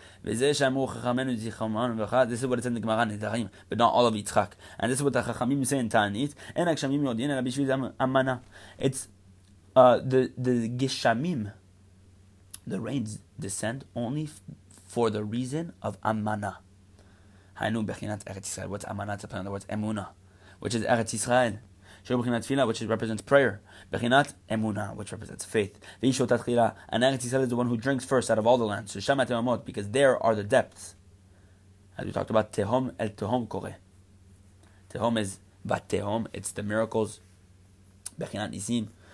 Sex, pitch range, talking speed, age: male, 100-125 Hz, 120 wpm, 20-39